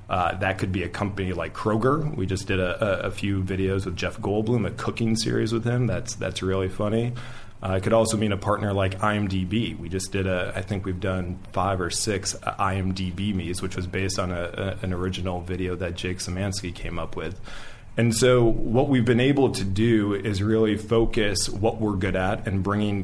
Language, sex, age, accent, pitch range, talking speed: English, male, 30-49, American, 95-110 Hz, 215 wpm